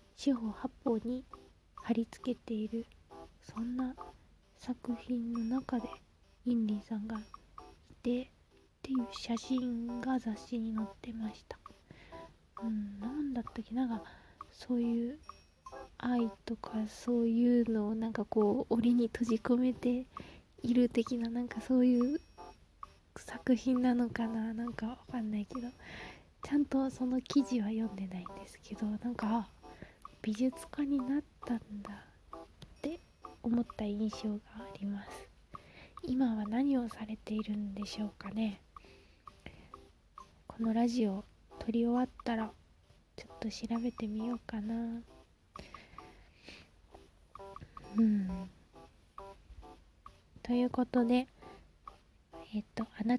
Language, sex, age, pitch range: Japanese, female, 20-39, 220-245 Hz